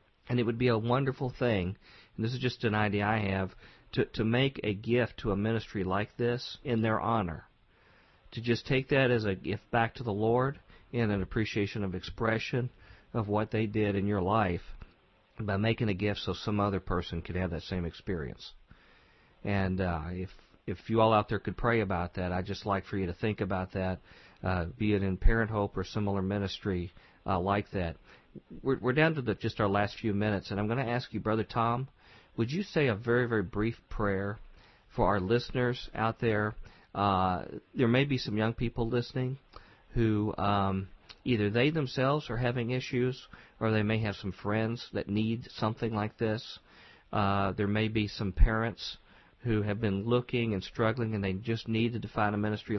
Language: English